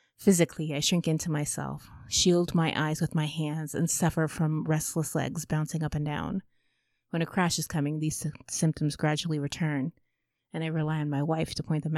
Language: English